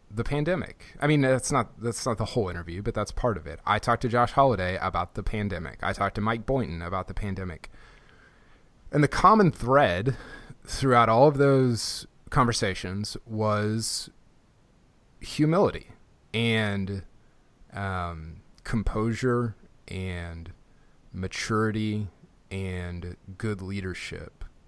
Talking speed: 125 wpm